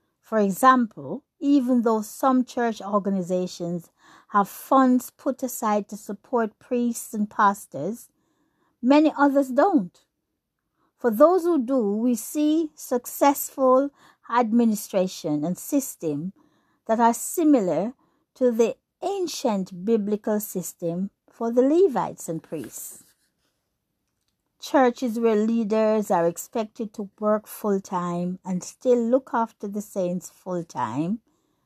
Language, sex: English, female